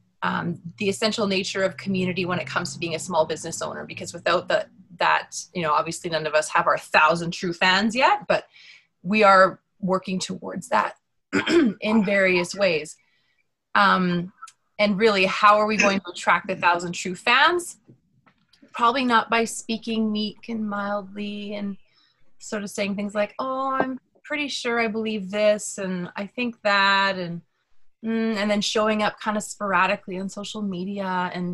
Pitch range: 175-210 Hz